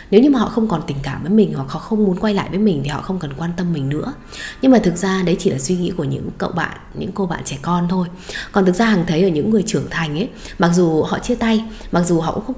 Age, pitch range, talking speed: 20-39, 165-210 Hz, 315 wpm